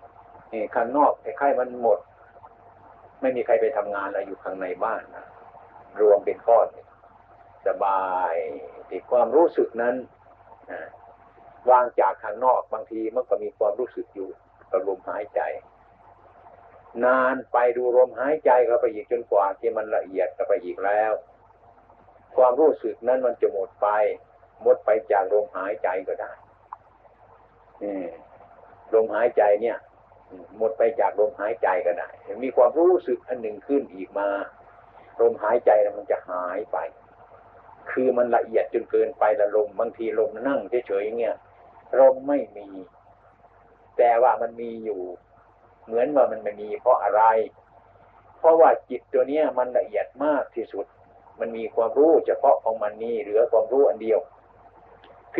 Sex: male